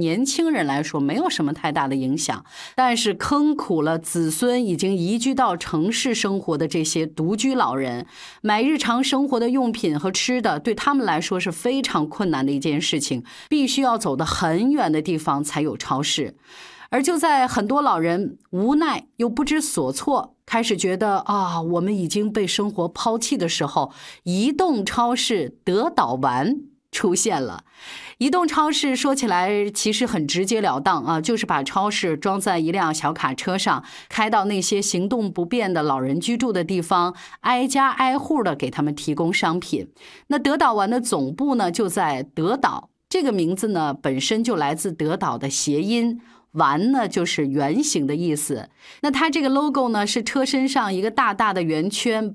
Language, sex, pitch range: Chinese, female, 160-255 Hz